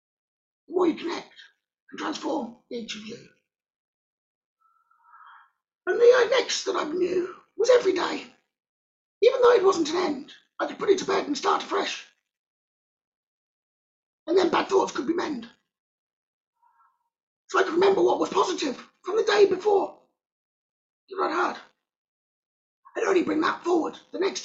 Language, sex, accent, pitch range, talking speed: English, male, British, 325-435 Hz, 140 wpm